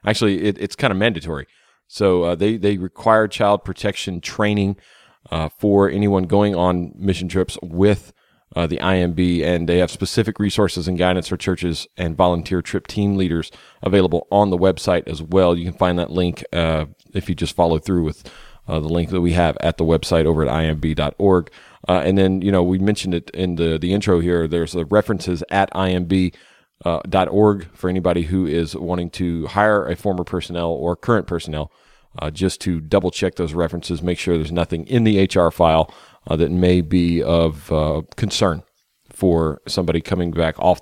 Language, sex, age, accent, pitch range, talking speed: English, male, 30-49, American, 85-100 Hz, 185 wpm